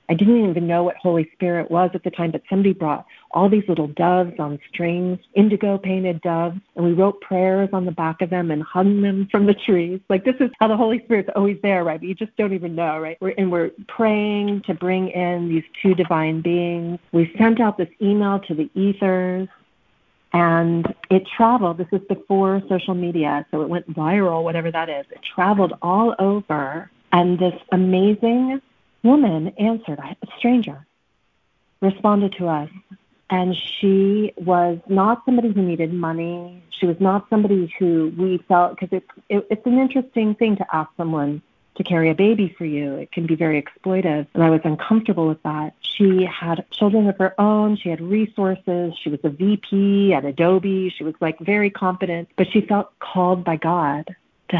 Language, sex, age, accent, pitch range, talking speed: English, female, 40-59, American, 170-200 Hz, 185 wpm